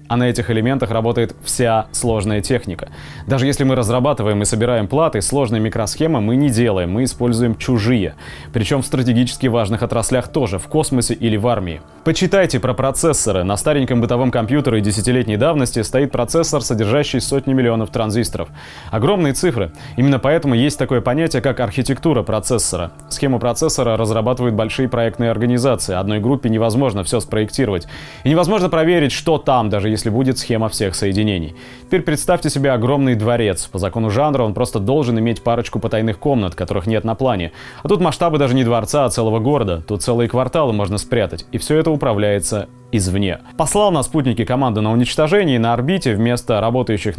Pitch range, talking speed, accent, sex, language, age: 110-135 Hz, 170 wpm, native, male, Russian, 20-39